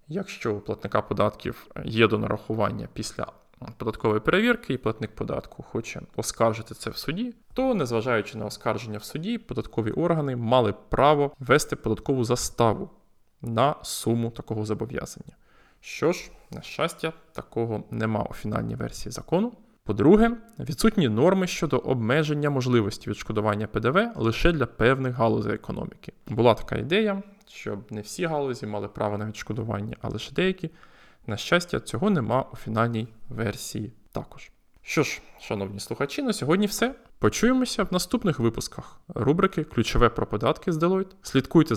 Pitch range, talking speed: 110-175 Hz, 140 wpm